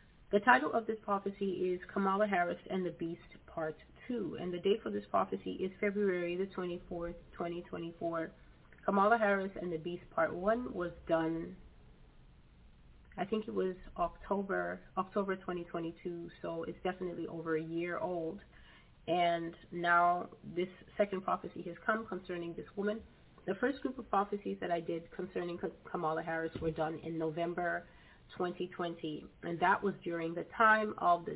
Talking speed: 155 wpm